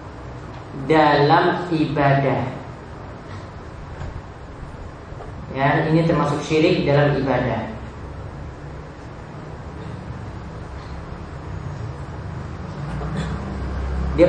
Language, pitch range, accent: Indonesian, 140-175 Hz, native